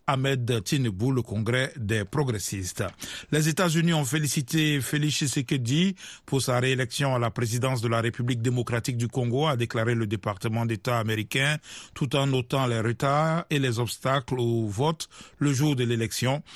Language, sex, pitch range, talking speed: French, male, 120-145 Hz, 160 wpm